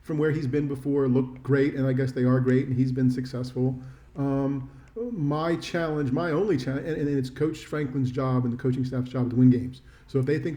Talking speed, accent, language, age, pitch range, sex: 235 wpm, American, English, 40-59, 125-140 Hz, male